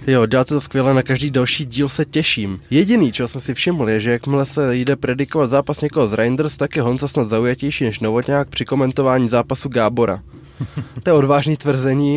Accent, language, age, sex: native, Czech, 20-39, male